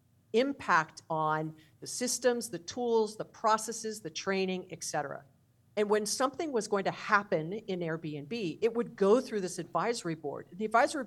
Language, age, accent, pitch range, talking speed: English, 50-69, American, 160-215 Hz, 165 wpm